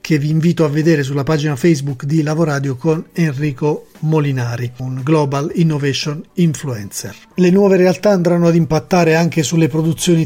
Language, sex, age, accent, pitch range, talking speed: Italian, male, 40-59, native, 145-175 Hz, 150 wpm